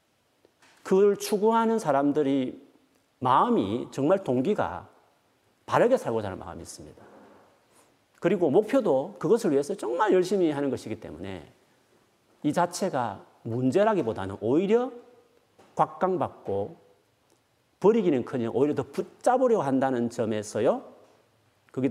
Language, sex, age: Korean, male, 40-59